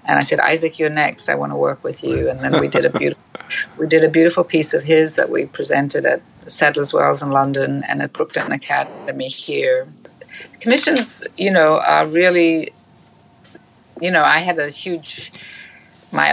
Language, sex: English, female